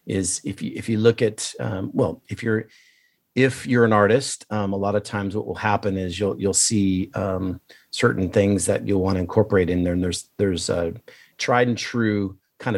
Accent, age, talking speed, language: American, 30-49, 210 wpm, English